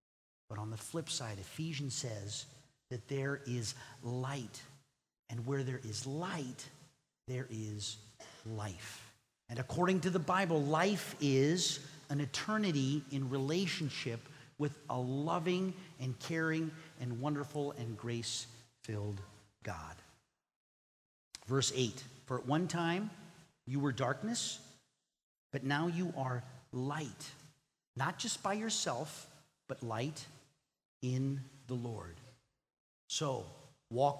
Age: 40-59